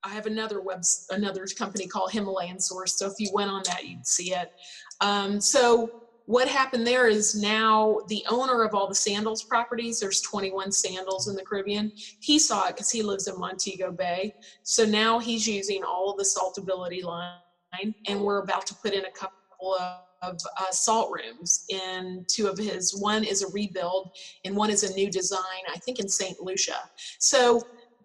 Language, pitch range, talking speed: English, 190-225 Hz, 190 wpm